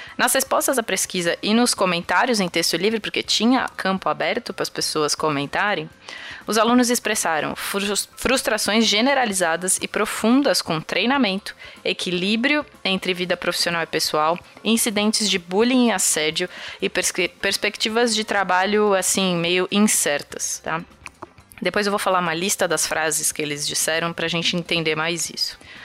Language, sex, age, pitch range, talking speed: Portuguese, female, 20-39, 160-210 Hz, 140 wpm